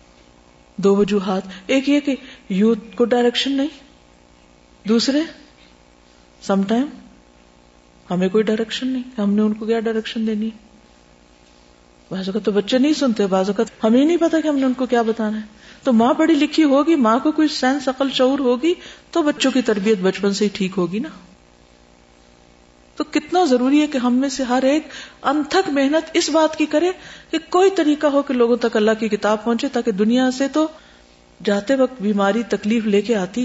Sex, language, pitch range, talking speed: female, Urdu, 180-265 Hz, 185 wpm